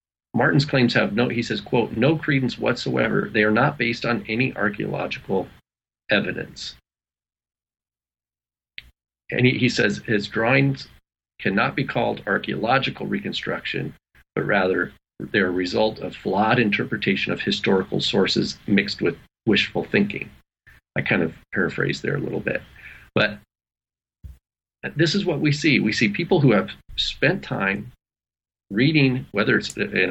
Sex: male